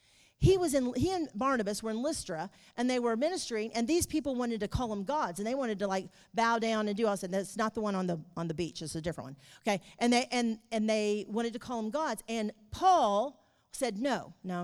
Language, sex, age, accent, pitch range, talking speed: English, female, 40-59, American, 180-245 Hz, 255 wpm